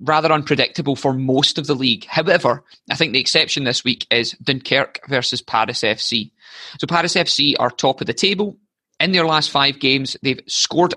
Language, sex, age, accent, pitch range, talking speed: English, male, 20-39, British, 130-165 Hz, 185 wpm